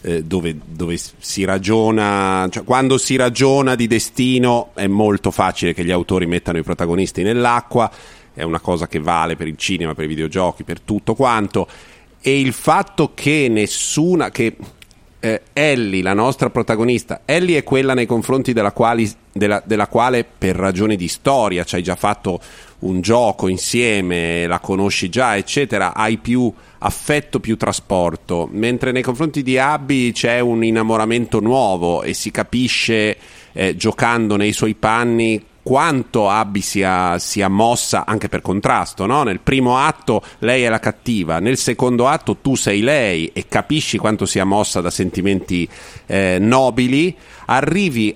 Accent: native